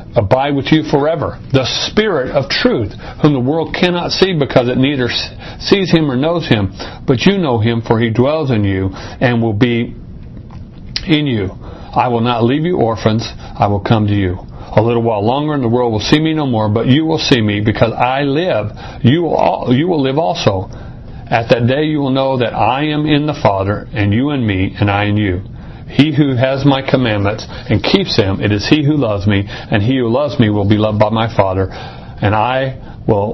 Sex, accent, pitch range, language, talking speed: male, American, 110-140 Hz, English, 215 wpm